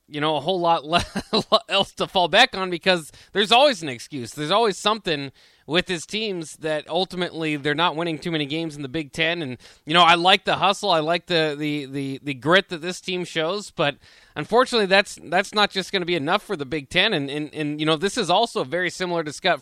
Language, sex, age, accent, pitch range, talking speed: English, male, 20-39, American, 150-200 Hz, 245 wpm